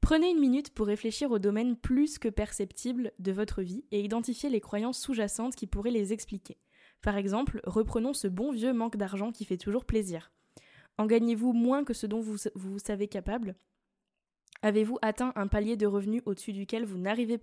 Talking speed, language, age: 185 wpm, French, 10-29